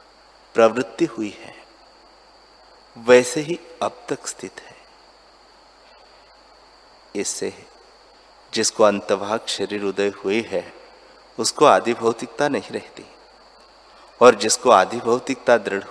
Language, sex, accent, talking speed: Hindi, male, native, 100 wpm